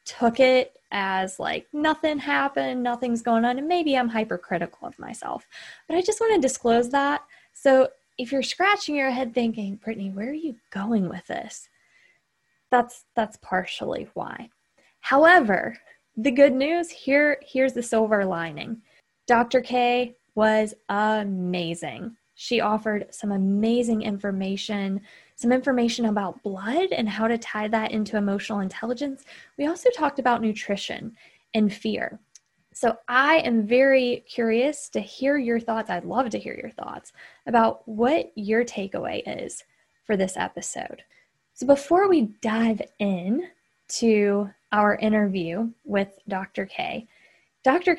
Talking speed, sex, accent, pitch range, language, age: 140 wpm, female, American, 210-265 Hz, English, 20-39